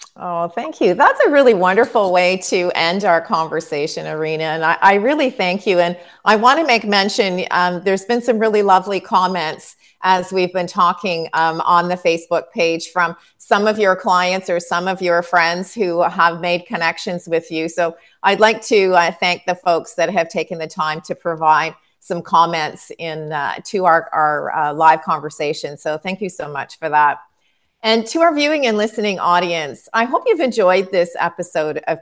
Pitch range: 160-195 Hz